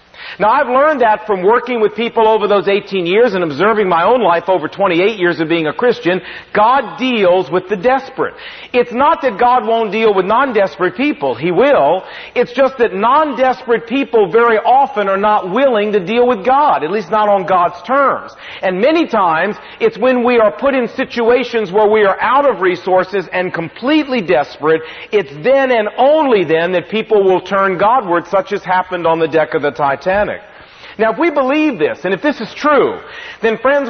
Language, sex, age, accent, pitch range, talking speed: English, male, 40-59, American, 190-255 Hz, 195 wpm